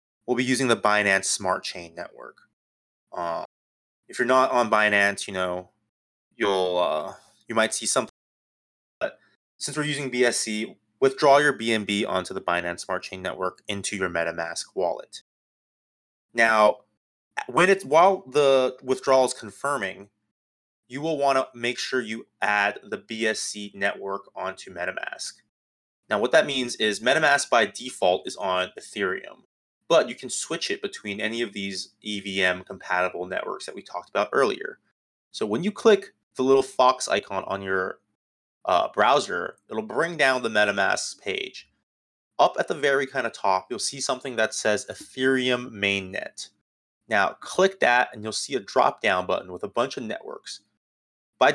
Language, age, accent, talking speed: English, 30-49, American, 155 wpm